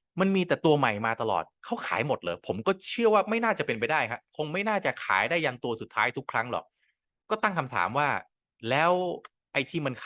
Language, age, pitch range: Thai, 20-39, 110-165 Hz